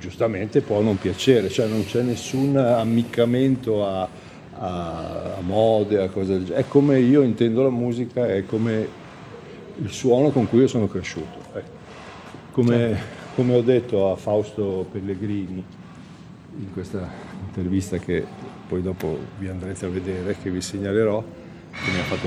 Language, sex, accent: Italian, male, native